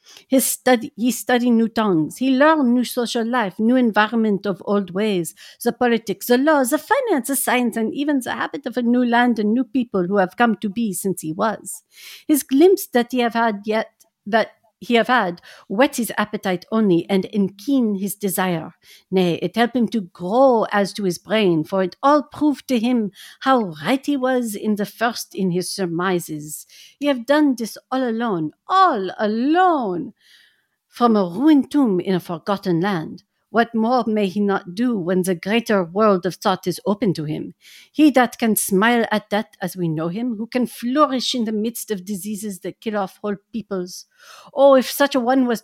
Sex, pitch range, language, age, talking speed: female, 195-250 Hz, English, 60-79, 195 wpm